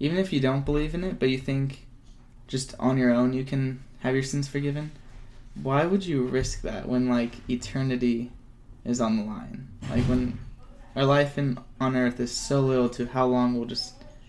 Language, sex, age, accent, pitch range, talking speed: English, male, 20-39, American, 120-130 Hz, 195 wpm